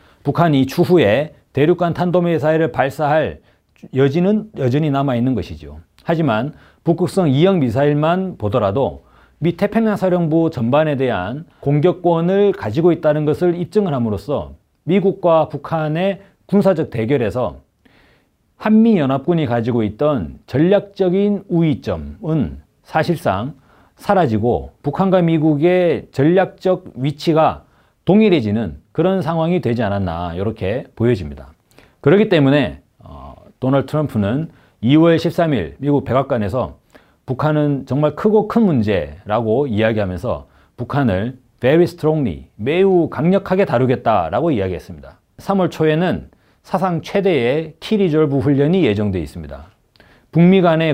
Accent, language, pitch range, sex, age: native, Korean, 120-175 Hz, male, 40-59